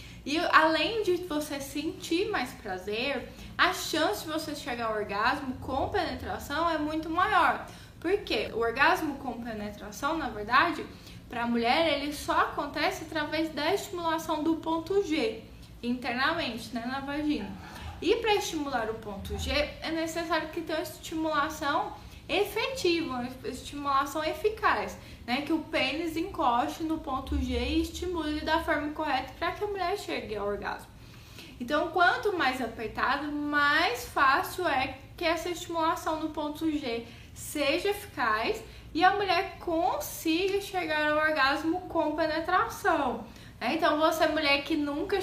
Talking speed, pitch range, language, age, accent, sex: 140 wpm, 275-340 Hz, Portuguese, 10-29, Brazilian, female